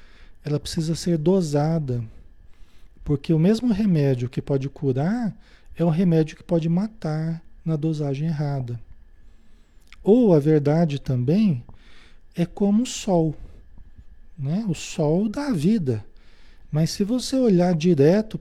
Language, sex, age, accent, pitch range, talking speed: Portuguese, male, 40-59, Brazilian, 130-180 Hz, 125 wpm